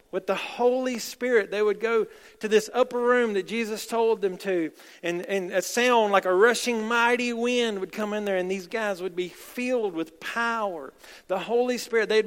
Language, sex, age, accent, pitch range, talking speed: English, male, 40-59, American, 175-235 Hz, 200 wpm